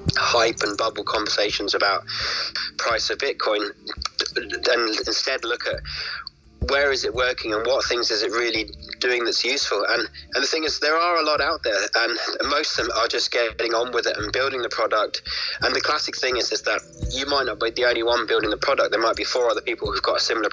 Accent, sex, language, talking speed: British, male, English, 225 wpm